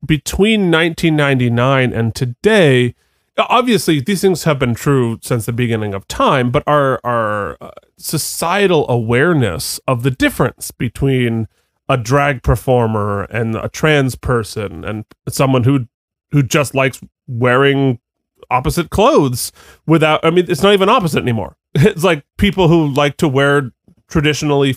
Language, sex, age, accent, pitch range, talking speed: English, male, 30-49, American, 120-160 Hz, 135 wpm